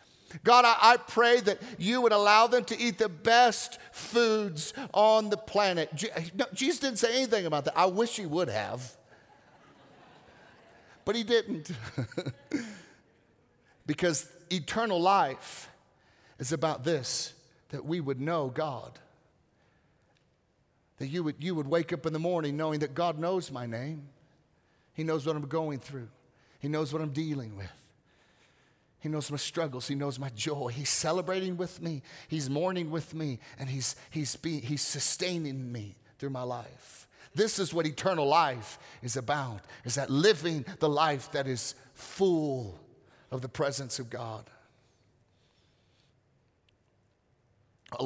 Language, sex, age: English, male, 40-59